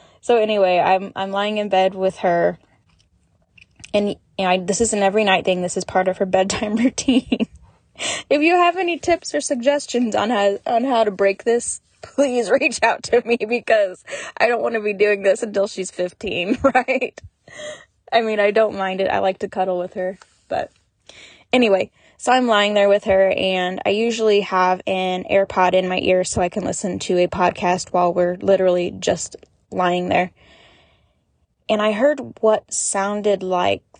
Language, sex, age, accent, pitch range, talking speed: English, female, 10-29, American, 185-230 Hz, 185 wpm